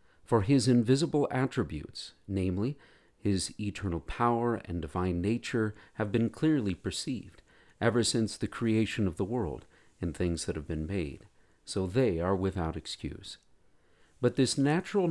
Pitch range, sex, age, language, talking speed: 90-120 Hz, male, 50-69, English, 145 wpm